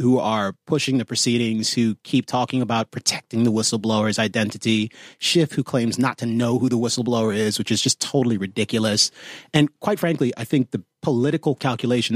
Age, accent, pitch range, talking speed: 30-49, American, 110-135 Hz, 180 wpm